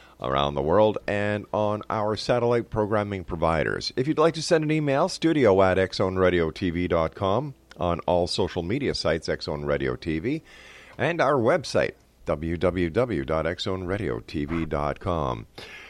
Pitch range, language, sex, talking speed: 85-115 Hz, English, male, 115 wpm